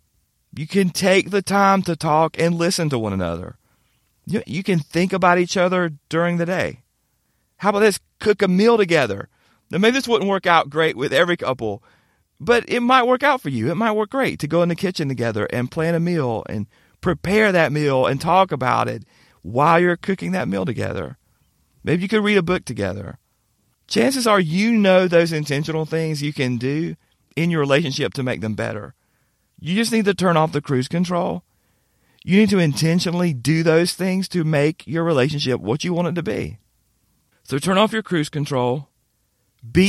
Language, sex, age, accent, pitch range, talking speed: English, male, 40-59, American, 130-180 Hz, 195 wpm